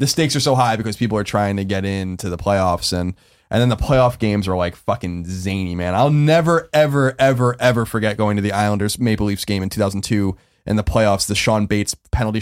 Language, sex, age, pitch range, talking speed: English, male, 20-39, 105-160 Hz, 225 wpm